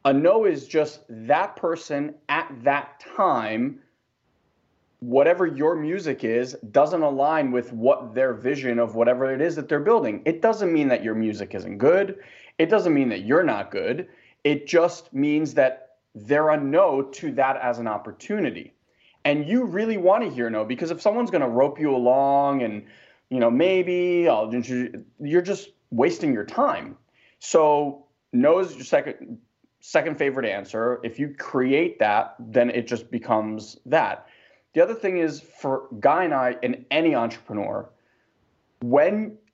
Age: 20-39